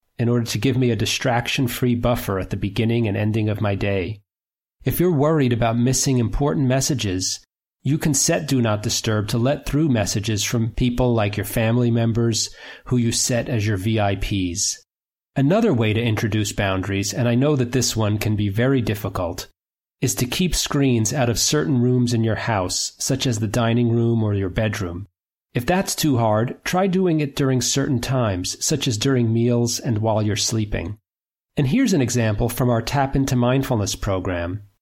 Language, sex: English, male